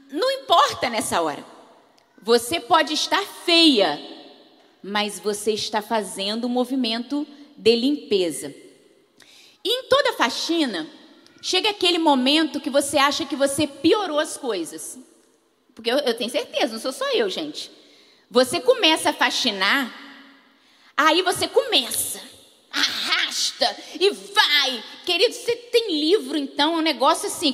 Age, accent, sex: 20-39, Brazilian, female